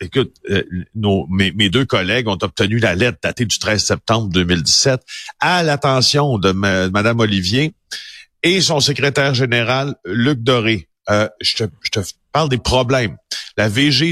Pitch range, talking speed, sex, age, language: 105-135 Hz, 155 wpm, male, 50-69, French